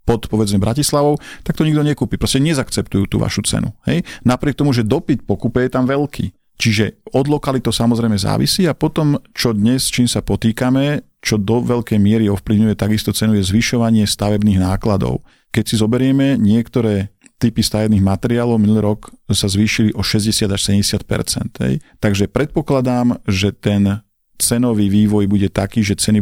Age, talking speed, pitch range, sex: 50-69, 160 wpm, 100-120 Hz, male